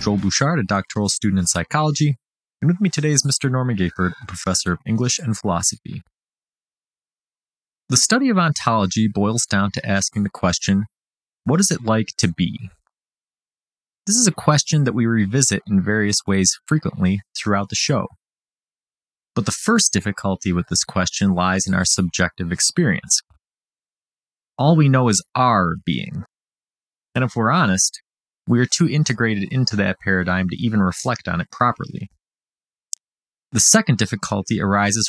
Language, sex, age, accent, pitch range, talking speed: English, male, 30-49, American, 95-145 Hz, 150 wpm